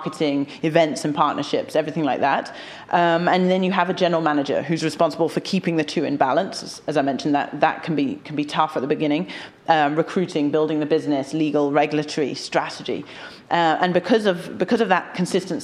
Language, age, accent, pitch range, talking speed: English, 40-59, British, 150-170 Hz, 200 wpm